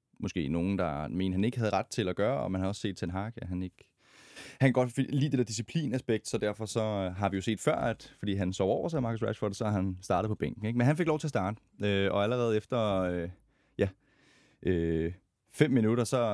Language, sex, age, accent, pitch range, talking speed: Danish, male, 20-39, native, 95-125 Hz, 255 wpm